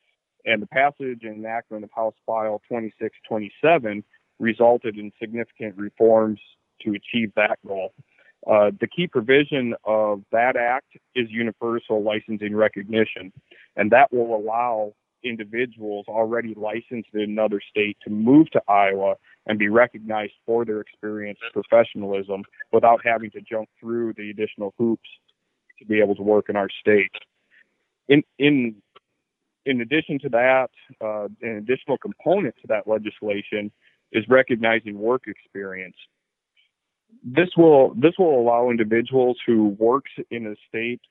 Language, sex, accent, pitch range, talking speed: English, male, American, 105-120 Hz, 135 wpm